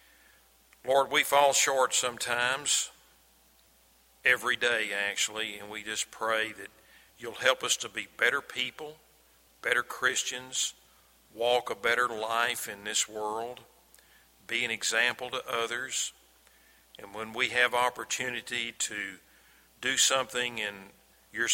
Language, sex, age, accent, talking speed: English, male, 50-69, American, 125 wpm